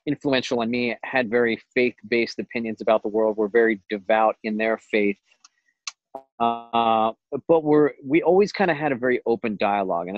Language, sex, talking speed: English, male, 165 wpm